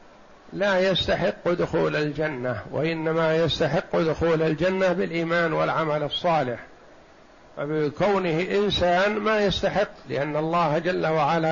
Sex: male